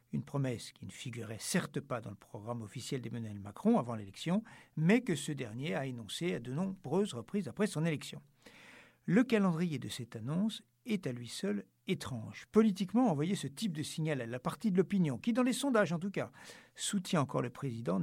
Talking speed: 200 wpm